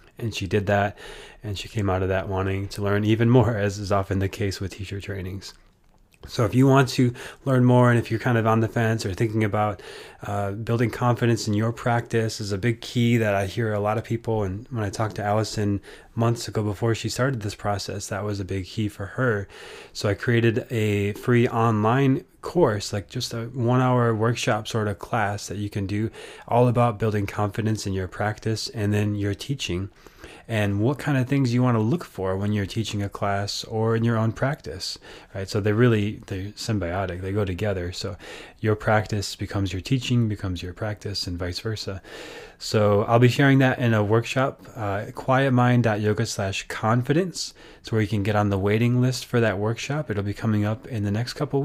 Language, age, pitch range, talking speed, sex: English, 20-39, 100-120 Hz, 205 wpm, male